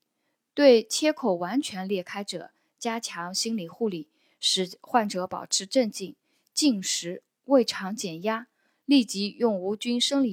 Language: Chinese